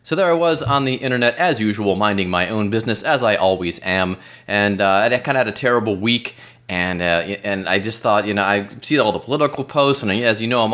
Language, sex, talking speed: English, male, 250 wpm